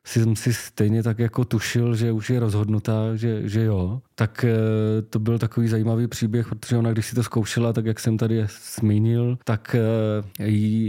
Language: Czech